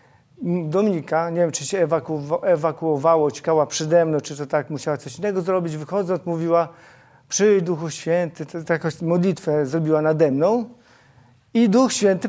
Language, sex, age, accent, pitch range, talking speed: Polish, male, 40-59, native, 150-200 Hz, 140 wpm